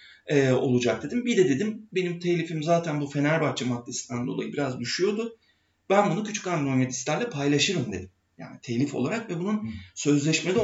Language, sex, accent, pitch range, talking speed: Turkish, male, native, 135-185 Hz, 150 wpm